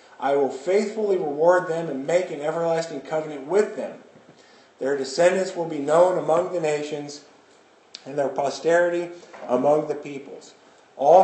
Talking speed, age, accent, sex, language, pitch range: 145 wpm, 40-59, American, male, English, 140-175 Hz